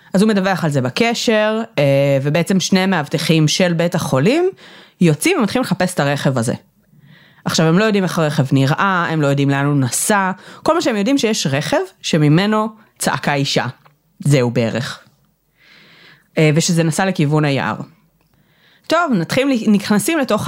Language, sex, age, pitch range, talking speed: Hebrew, female, 30-49, 150-205 Hz, 145 wpm